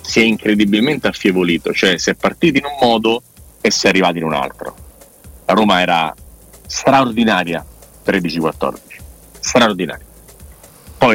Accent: native